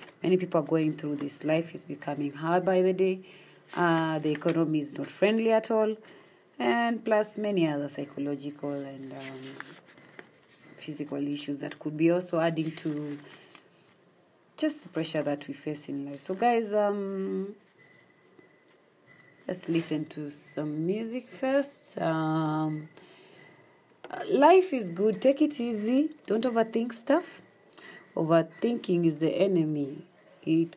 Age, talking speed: 30-49, 135 wpm